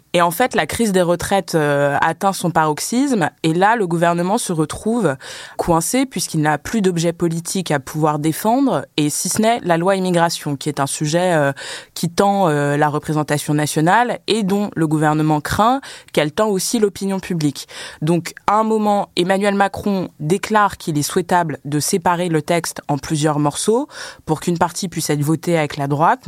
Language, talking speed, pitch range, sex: French, 185 wpm, 150-200 Hz, female